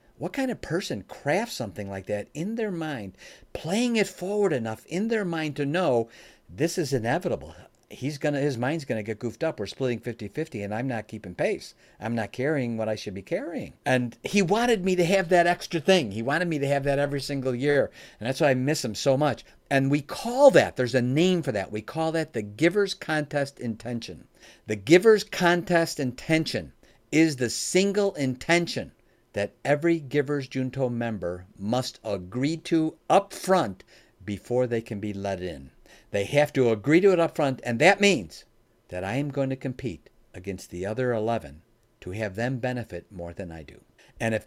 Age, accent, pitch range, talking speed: 50-69, American, 110-170 Hz, 195 wpm